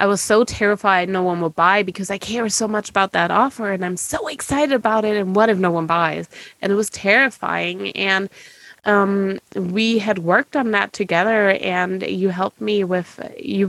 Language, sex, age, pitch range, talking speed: English, female, 20-39, 180-215 Hz, 200 wpm